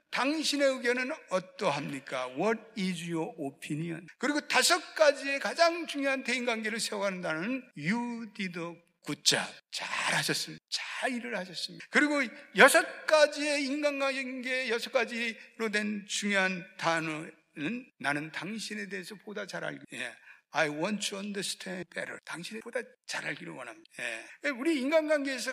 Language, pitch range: Korean, 185-270 Hz